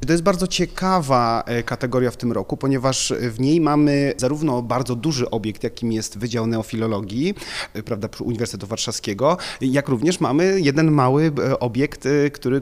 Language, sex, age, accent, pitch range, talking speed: Polish, male, 30-49, native, 120-145 Hz, 145 wpm